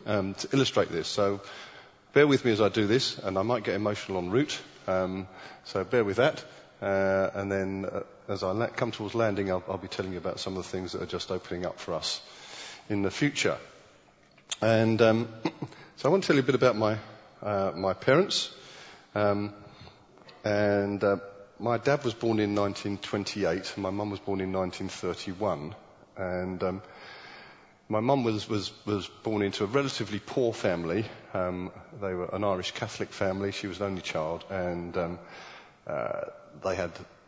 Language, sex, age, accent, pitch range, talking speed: English, male, 30-49, British, 95-110 Hz, 185 wpm